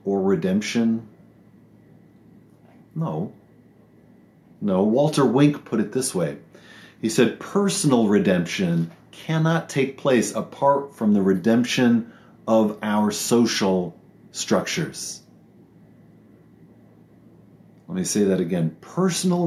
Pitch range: 140-190 Hz